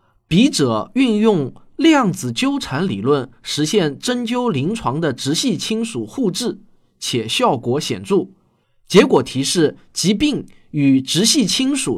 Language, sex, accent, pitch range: Chinese, male, native, 140-230 Hz